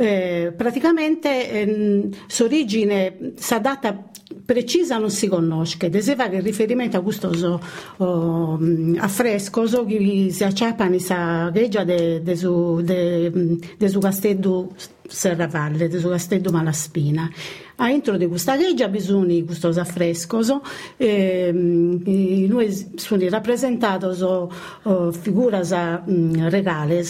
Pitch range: 175-225 Hz